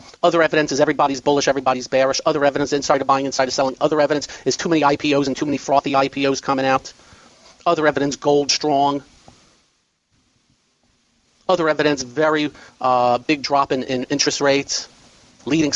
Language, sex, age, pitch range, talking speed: English, male, 40-59, 135-155 Hz, 160 wpm